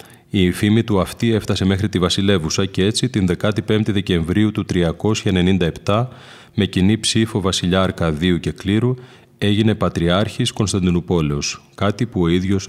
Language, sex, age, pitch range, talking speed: Greek, male, 30-49, 90-105 Hz, 135 wpm